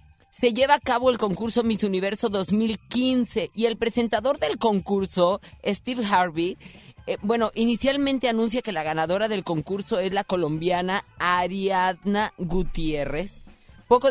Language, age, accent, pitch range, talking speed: Spanish, 30-49, Mexican, 165-225 Hz, 130 wpm